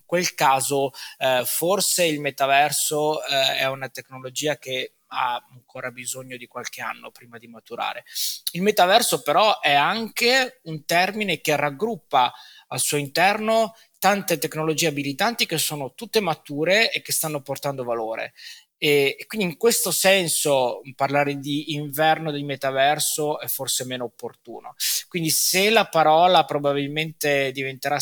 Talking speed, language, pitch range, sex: 140 wpm, Italian, 130-155 Hz, male